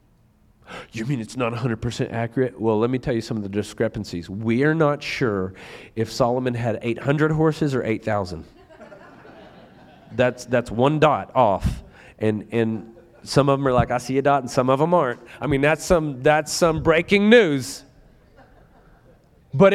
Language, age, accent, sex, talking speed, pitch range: English, 40-59, American, male, 165 wpm, 105-145 Hz